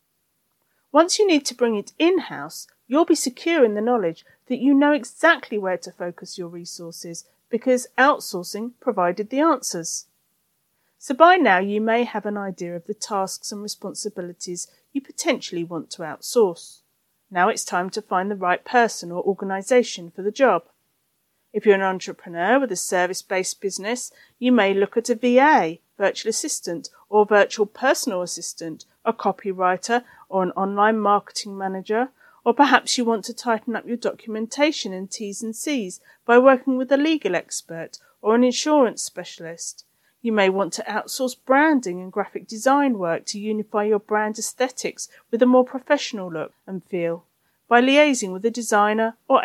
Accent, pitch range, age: British, 185-250 Hz, 40-59